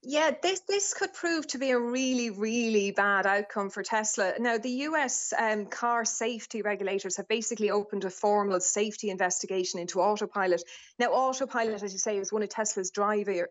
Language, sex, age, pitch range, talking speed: English, female, 30-49, 195-235 Hz, 180 wpm